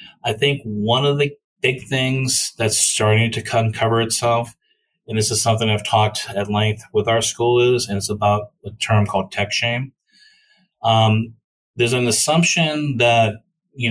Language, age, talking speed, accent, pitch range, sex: English, 30-49, 165 wpm, American, 105-120 Hz, male